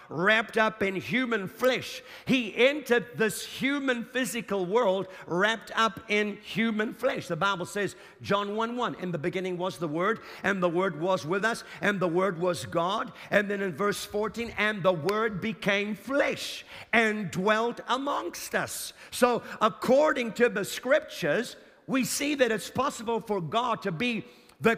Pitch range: 190-245 Hz